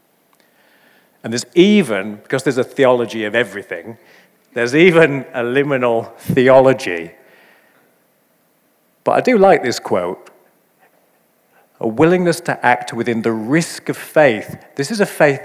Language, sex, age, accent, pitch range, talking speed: English, male, 50-69, British, 120-145 Hz, 130 wpm